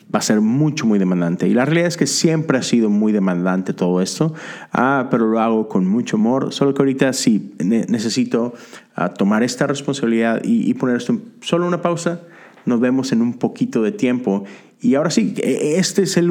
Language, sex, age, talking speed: Spanish, male, 30-49, 195 wpm